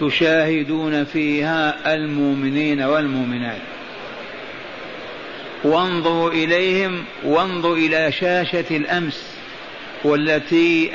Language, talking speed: Arabic, 60 wpm